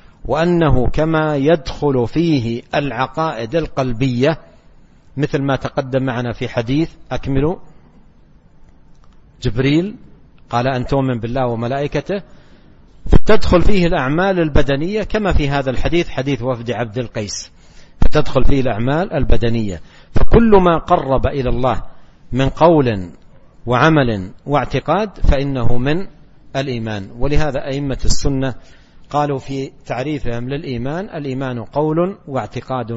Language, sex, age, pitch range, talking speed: Arabic, male, 60-79, 120-150 Hz, 105 wpm